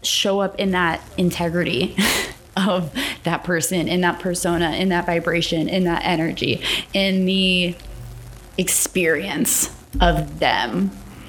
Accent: American